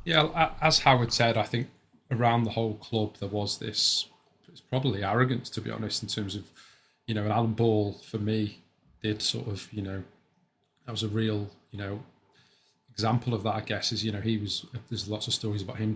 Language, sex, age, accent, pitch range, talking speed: English, male, 20-39, British, 105-120 Hz, 205 wpm